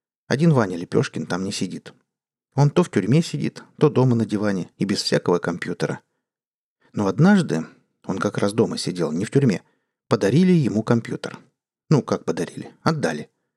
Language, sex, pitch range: Russian, male, 110-145 Hz